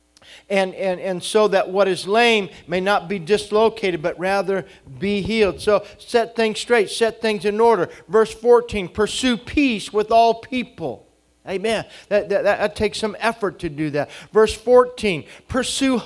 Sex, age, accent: male, 50-69, American